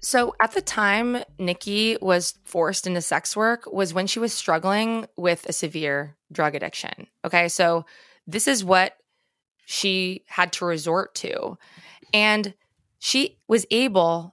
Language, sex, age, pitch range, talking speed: English, female, 20-39, 175-215 Hz, 140 wpm